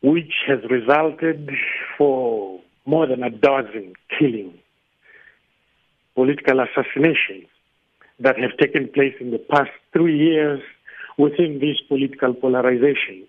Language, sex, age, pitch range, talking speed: English, male, 60-79, 130-160 Hz, 110 wpm